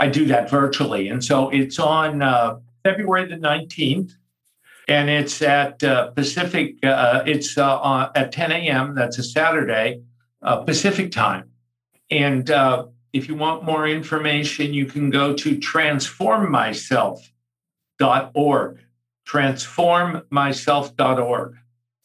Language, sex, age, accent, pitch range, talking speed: English, male, 60-79, American, 120-145 Hz, 115 wpm